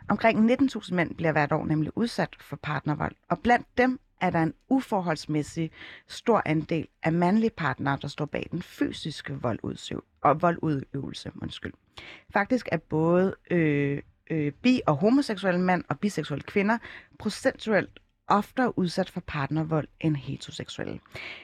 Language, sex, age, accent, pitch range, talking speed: Danish, female, 30-49, native, 150-215 Hz, 130 wpm